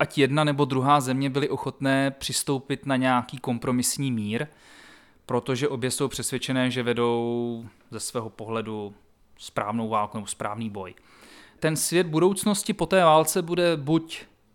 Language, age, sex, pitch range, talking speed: Czech, 30-49, male, 120-160 Hz, 140 wpm